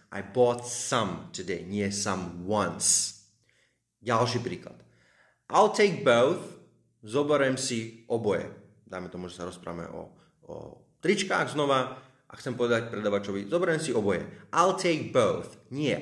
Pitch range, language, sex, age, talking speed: 100-130 Hz, Slovak, male, 30-49, 130 wpm